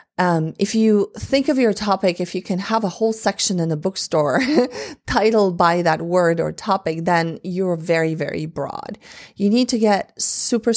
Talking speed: 185 wpm